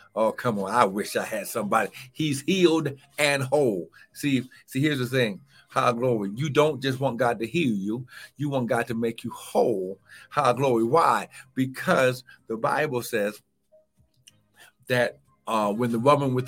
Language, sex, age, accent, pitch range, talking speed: English, male, 50-69, American, 120-145 Hz, 170 wpm